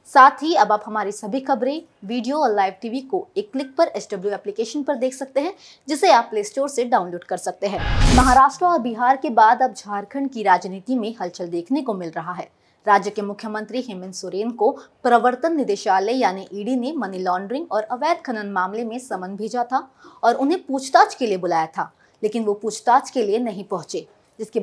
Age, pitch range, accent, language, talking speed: 20-39, 205-265 Hz, native, Hindi, 200 wpm